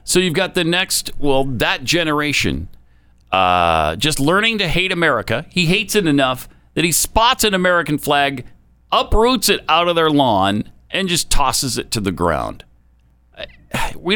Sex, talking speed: male, 160 wpm